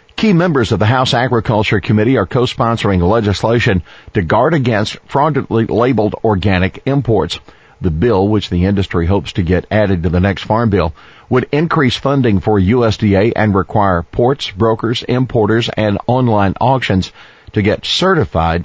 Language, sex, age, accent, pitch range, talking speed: English, male, 50-69, American, 90-120 Hz, 150 wpm